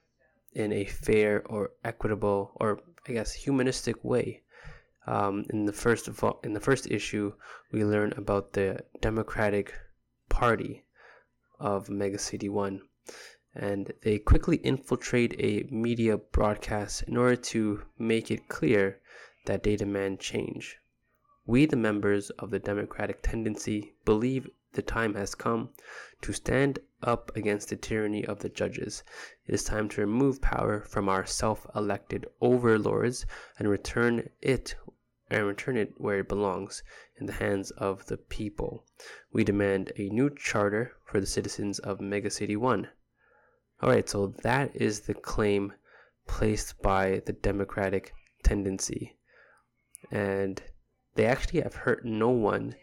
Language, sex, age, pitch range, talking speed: English, male, 20-39, 100-110 Hz, 140 wpm